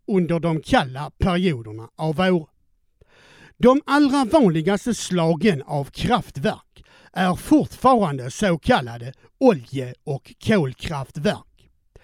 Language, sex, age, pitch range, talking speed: Swedish, male, 60-79, 155-230 Hz, 95 wpm